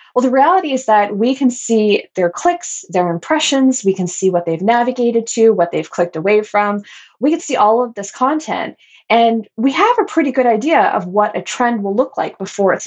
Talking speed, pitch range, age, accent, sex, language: 220 wpm, 190-245 Hz, 20-39, American, female, English